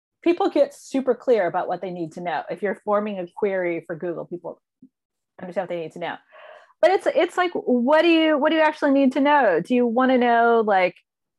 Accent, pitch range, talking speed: American, 195-250 Hz, 230 wpm